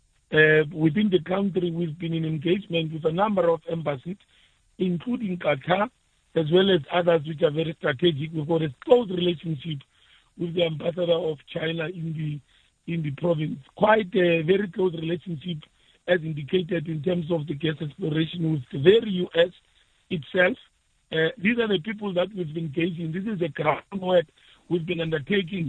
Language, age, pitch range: English, 50-69, 160-185 Hz